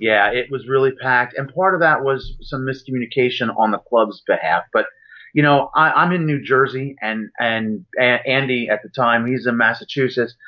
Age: 30-49